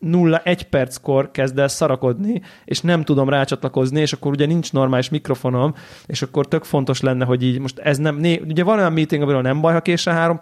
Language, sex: Hungarian, male